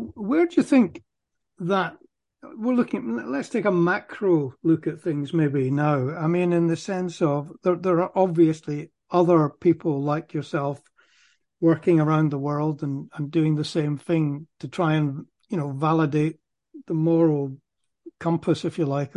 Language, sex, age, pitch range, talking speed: English, male, 60-79, 150-175 Hz, 165 wpm